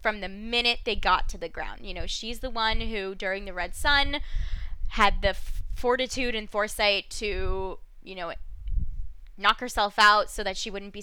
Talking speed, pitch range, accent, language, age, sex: 185 wpm, 190-235 Hz, American, English, 20-39, female